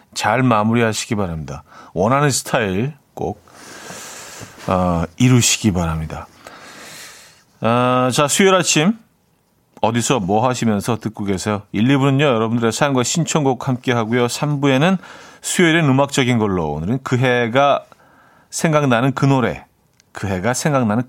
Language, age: Korean, 40-59